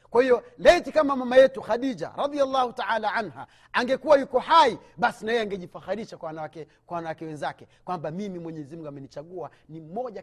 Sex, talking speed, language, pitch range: male, 170 wpm, Swahili, 175-280 Hz